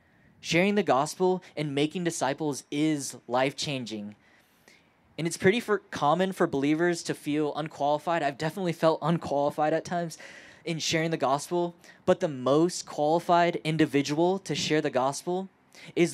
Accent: American